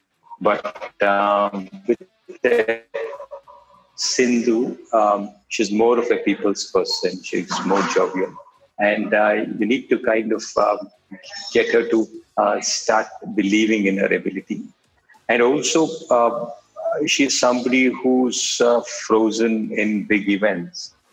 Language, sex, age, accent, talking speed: Tamil, male, 50-69, native, 115 wpm